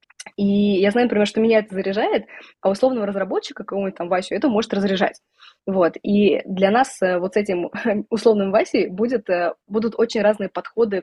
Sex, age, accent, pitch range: female, 20-39, native, 185-220 Hz